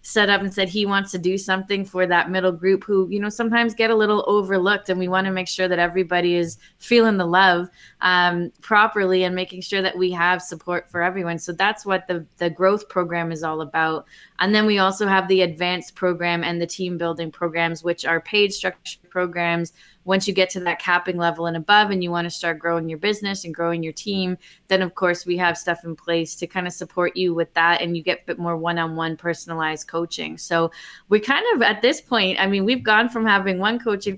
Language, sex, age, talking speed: English, female, 20-39, 230 wpm